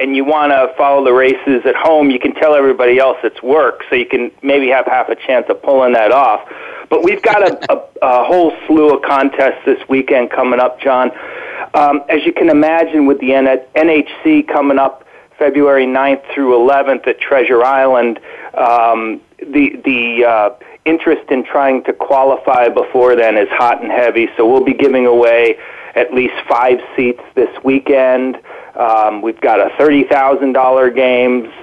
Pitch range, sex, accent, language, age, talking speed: 130-155 Hz, male, American, English, 40-59, 175 wpm